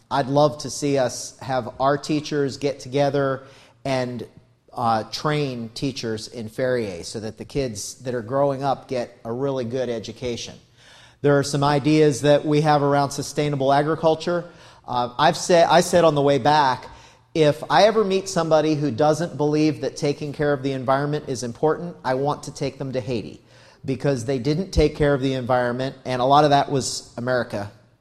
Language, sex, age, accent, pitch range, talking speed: English, male, 40-59, American, 125-145 Hz, 185 wpm